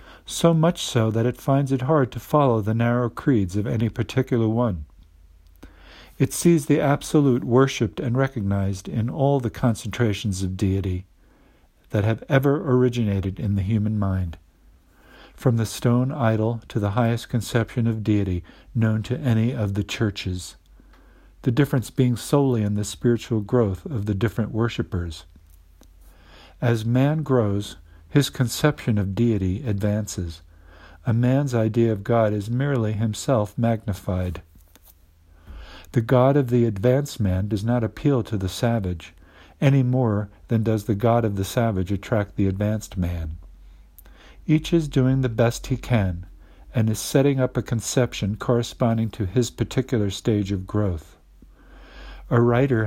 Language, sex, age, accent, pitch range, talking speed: English, male, 50-69, American, 95-125 Hz, 150 wpm